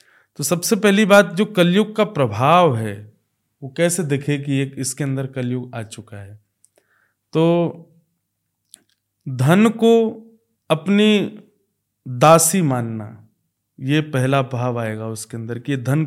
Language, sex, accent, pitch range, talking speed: Hindi, male, native, 125-175 Hz, 130 wpm